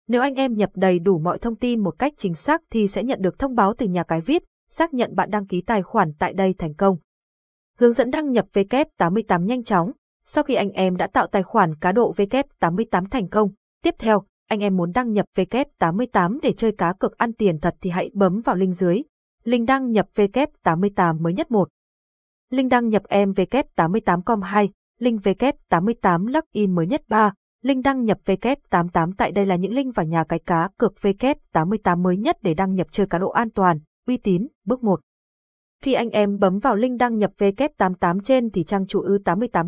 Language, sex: Vietnamese, female